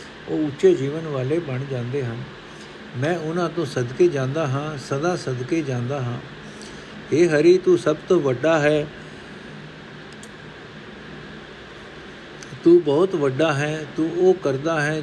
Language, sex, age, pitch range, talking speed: Punjabi, male, 60-79, 130-165 Hz, 130 wpm